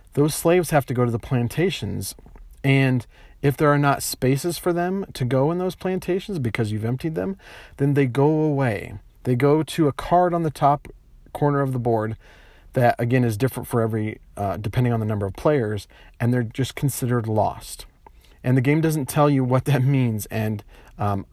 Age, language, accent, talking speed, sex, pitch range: 40-59, English, American, 195 wpm, male, 115-140 Hz